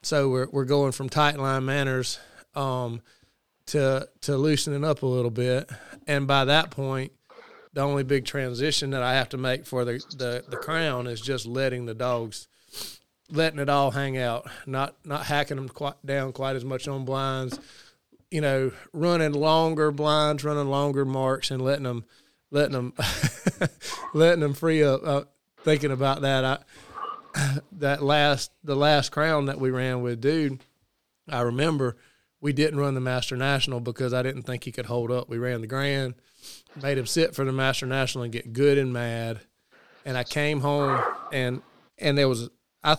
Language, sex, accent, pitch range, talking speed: English, male, American, 125-145 Hz, 175 wpm